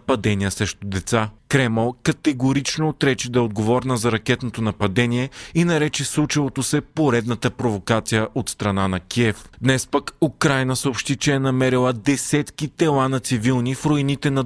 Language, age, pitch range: Bulgarian, 30-49, 115-140 Hz